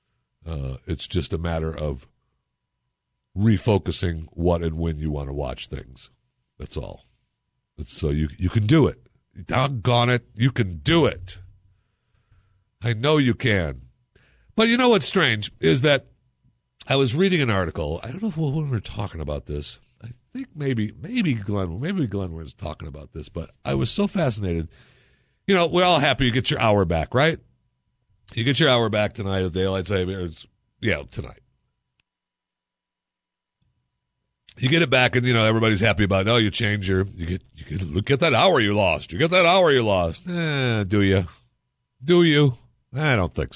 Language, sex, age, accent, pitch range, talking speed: English, male, 60-79, American, 80-125 Hz, 185 wpm